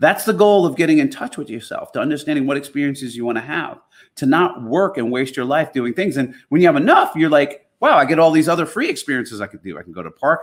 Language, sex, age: Polish, male, 30-49